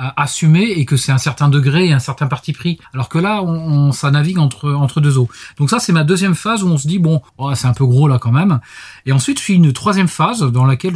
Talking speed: 275 wpm